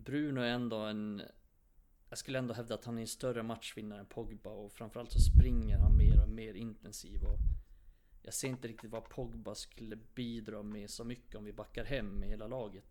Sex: male